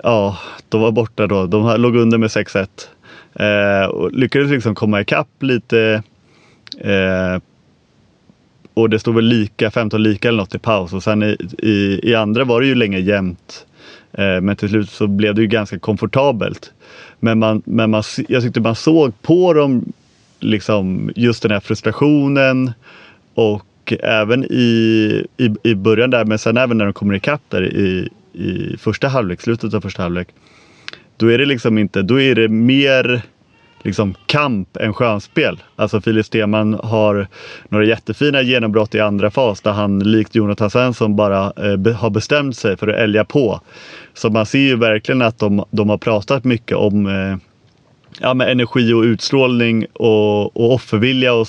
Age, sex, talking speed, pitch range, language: 30-49, male, 170 wpm, 105-120 Hz, Swedish